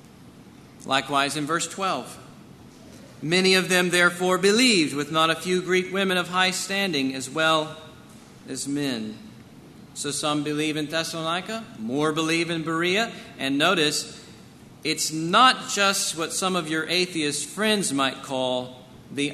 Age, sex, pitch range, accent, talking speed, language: 40-59, male, 150-205 Hz, American, 140 wpm, English